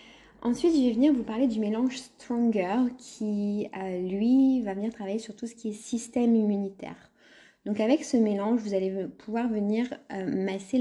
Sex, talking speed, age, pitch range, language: female, 180 wpm, 20-39, 195-235 Hz, French